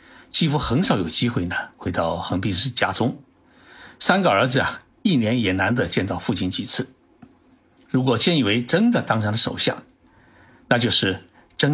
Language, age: Chinese, 60-79